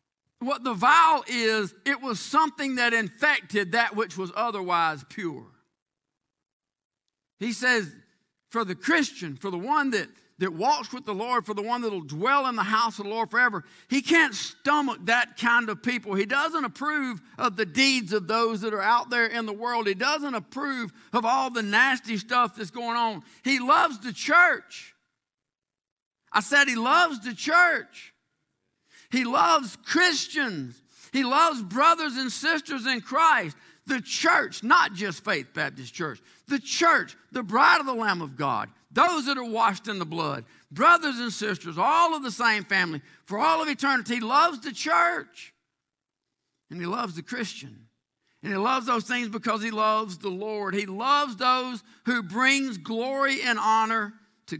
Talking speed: 175 wpm